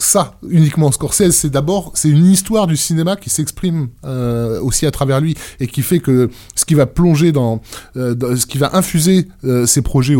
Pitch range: 115-150 Hz